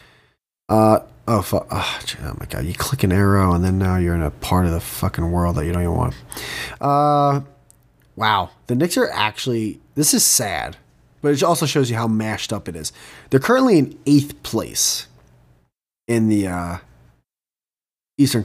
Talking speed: 180 wpm